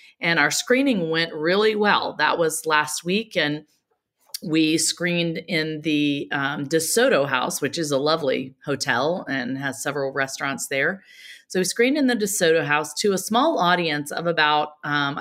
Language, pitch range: English, 145-180 Hz